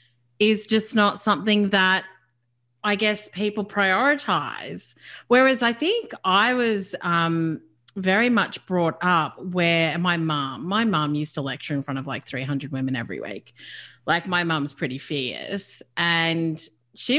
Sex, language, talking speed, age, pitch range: female, English, 145 wpm, 30-49, 155-210 Hz